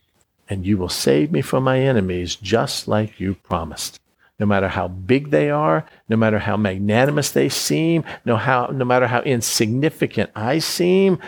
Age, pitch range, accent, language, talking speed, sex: 50-69, 105-130 Hz, American, English, 165 wpm, male